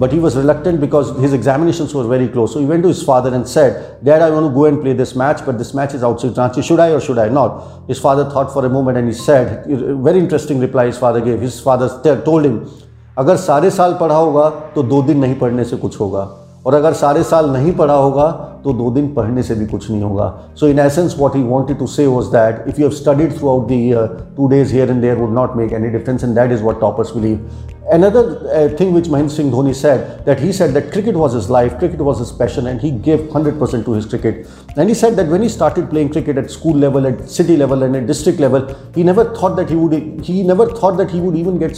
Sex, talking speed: male, 265 wpm